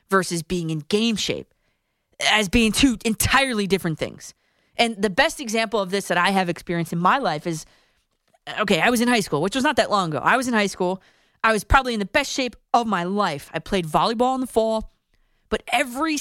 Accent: American